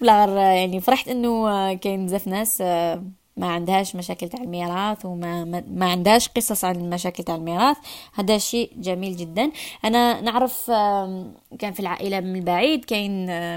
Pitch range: 185-245 Hz